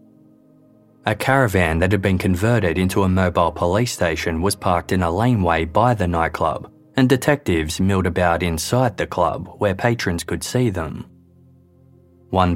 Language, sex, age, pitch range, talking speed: English, male, 20-39, 85-125 Hz, 155 wpm